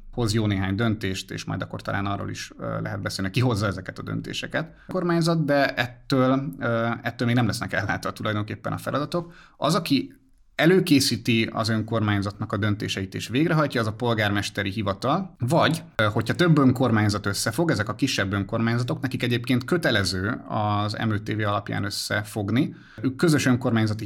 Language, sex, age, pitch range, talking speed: Hungarian, male, 30-49, 105-135 Hz, 155 wpm